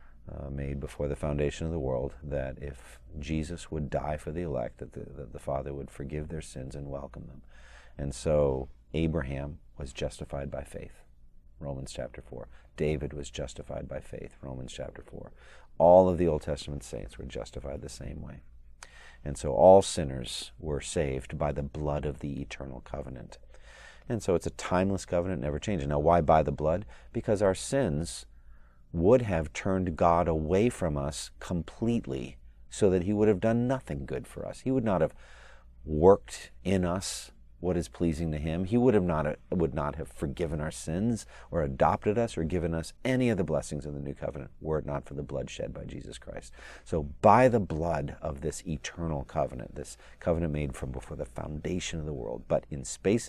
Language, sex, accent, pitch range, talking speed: English, male, American, 70-90 Hz, 195 wpm